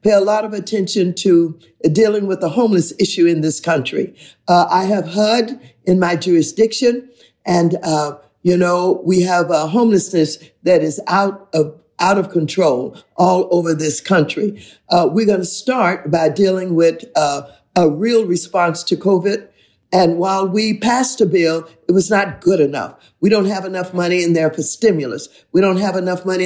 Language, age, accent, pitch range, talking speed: English, 50-69, American, 165-195 Hz, 180 wpm